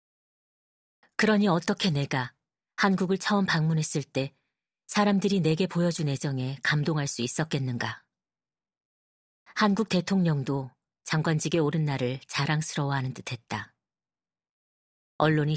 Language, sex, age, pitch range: Korean, female, 40-59, 135-175 Hz